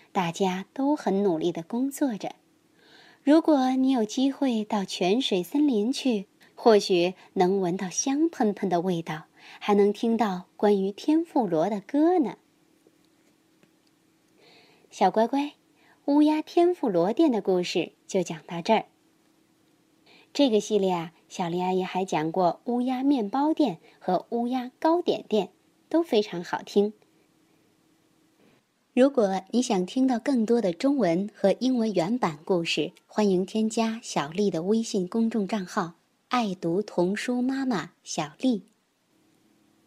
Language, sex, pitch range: Chinese, male, 185-255 Hz